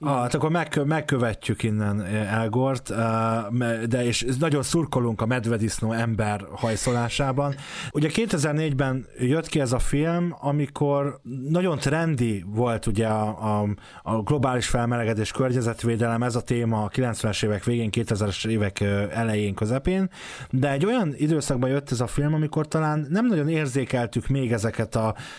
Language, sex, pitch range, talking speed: Hungarian, male, 115-135 Hz, 135 wpm